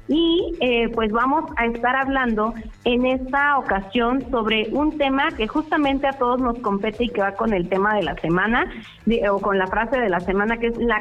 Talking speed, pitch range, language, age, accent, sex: 205 wpm, 220-275 Hz, Spanish, 30-49, Mexican, female